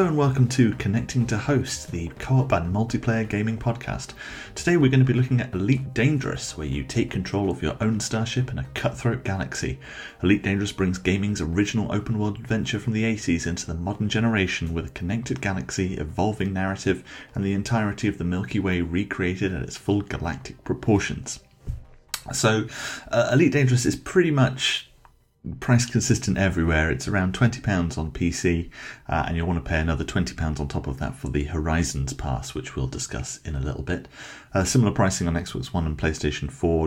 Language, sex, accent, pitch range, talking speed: English, male, British, 80-115 Hz, 185 wpm